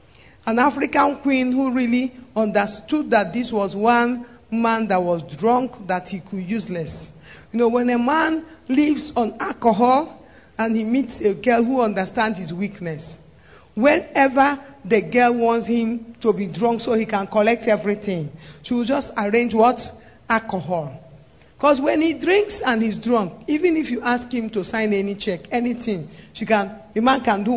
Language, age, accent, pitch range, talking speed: English, 50-69, Nigerian, 205-255 Hz, 170 wpm